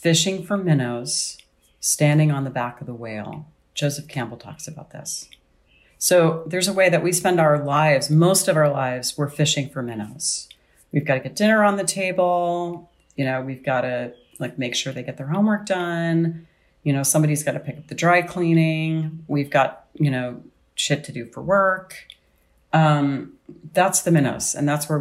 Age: 40-59